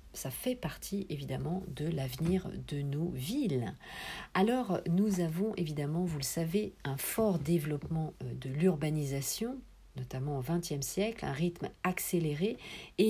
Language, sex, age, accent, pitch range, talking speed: French, female, 50-69, French, 145-195 Hz, 135 wpm